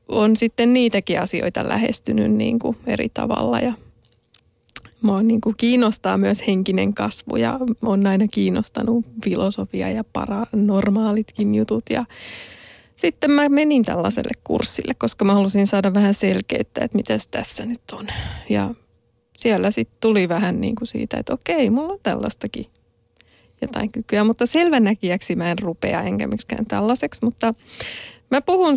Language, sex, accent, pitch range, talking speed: Finnish, female, native, 195-235 Hz, 140 wpm